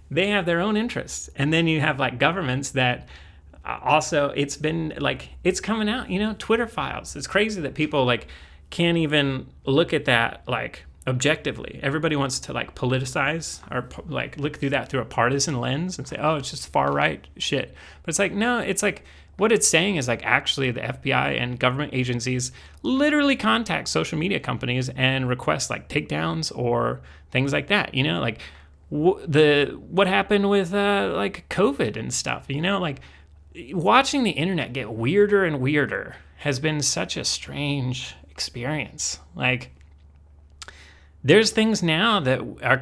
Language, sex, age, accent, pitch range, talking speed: English, male, 30-49, American, 120-175 Hz, 170 wpm